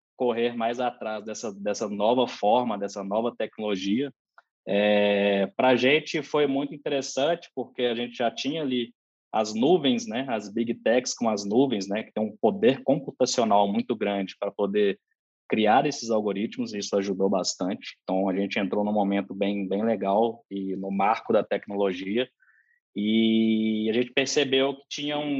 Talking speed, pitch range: 165 wpm, 105-130 Hz